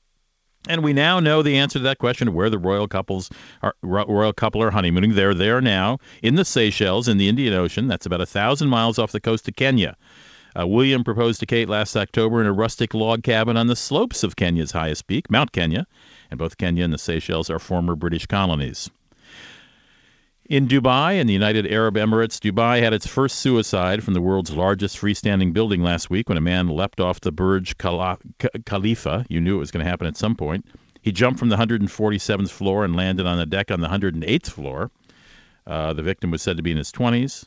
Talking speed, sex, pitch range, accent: 210 wpm, male, 90-115 Hz, American